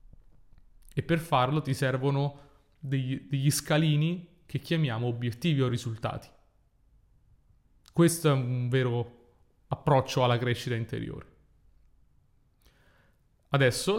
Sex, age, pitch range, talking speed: male, 30-49, 115-145 Hz, 95 wpm